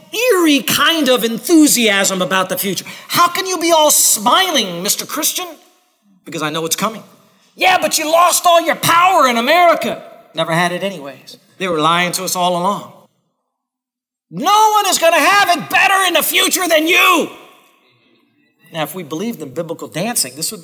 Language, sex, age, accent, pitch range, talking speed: English, male, 40-59, American, 160-250 Hz, 180 wpm